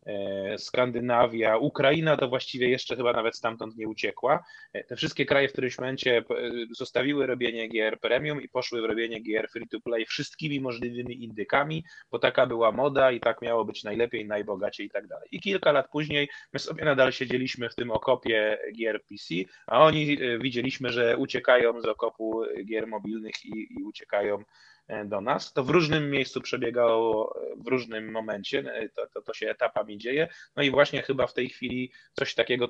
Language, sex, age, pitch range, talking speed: Polish, male, 20-39, 115-135 Hz, 170 wpm